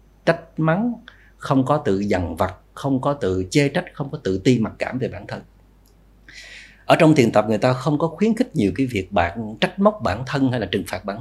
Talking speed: 235 wpm